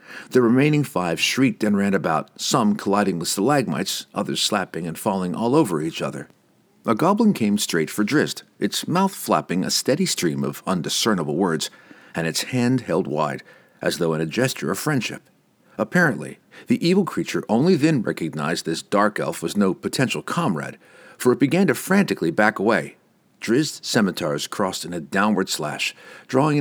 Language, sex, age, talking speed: English, male, 50-69, 170 wpm